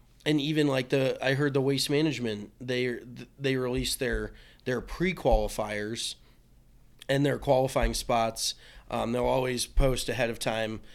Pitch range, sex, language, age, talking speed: 115-140 Hz, male, English, 20-39, 150 wpm